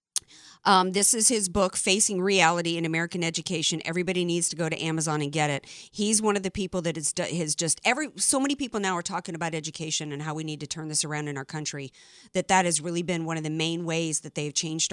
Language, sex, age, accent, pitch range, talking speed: English, female, 40-59, American, 165-225 Hz, 245 wpm